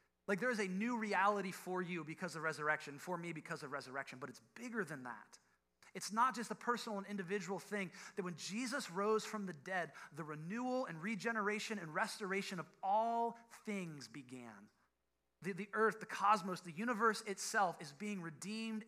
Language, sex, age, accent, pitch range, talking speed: English, male, 30-49, American, 165-220 Hz, 180 wpm